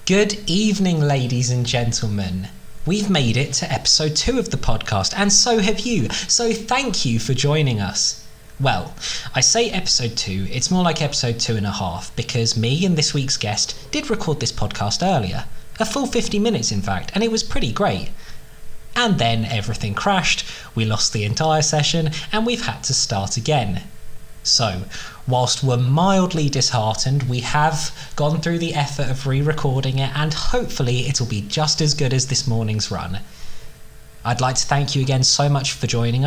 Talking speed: 180 wpm